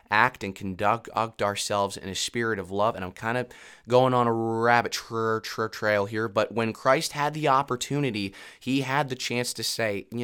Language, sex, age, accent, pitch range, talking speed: English, male, 20-39, American, 100-130 Hz, 190 wpm